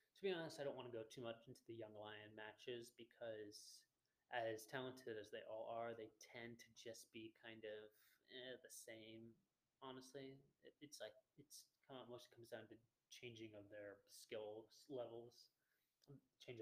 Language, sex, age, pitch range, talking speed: English, male, 20-39, 110-130 Hz, 175 wpm